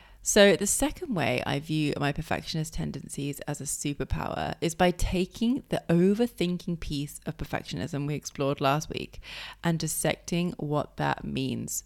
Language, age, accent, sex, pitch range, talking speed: English, 20-39, British, female, 150-185 Hz, 145 wpm